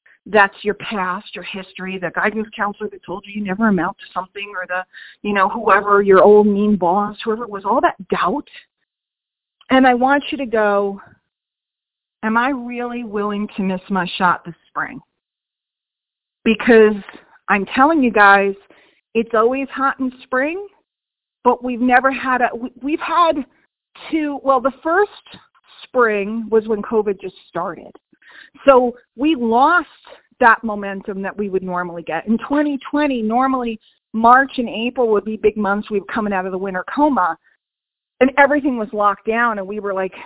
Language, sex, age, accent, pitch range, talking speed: English, female, 40-59, American, 200-265 Hz, 165 wpm